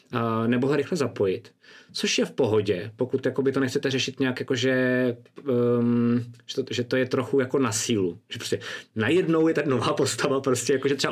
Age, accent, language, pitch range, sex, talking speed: 20-39, native, Czech, 115-130 Hz, male, 195 wpm